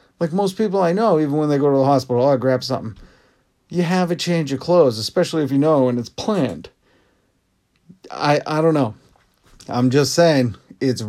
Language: English